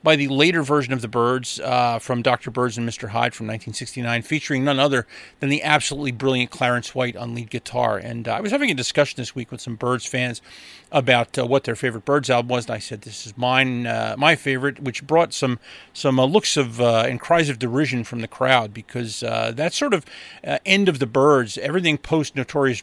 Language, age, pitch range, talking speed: English, 40-59, 120-145 Hz, 225 wpm